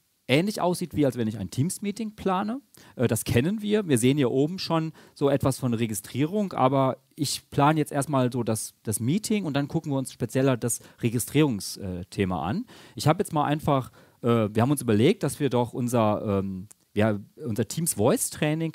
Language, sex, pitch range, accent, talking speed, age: German, male, 100-150 Hz, German, 180 wpm, 40-59